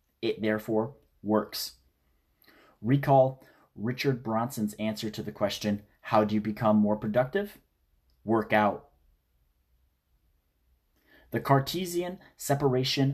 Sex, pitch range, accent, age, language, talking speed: male, 90-125 Hz, American, 30-49, English, 95 wpm